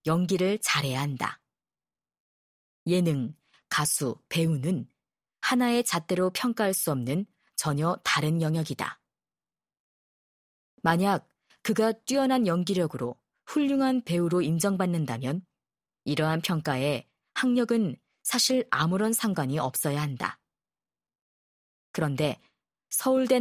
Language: Korean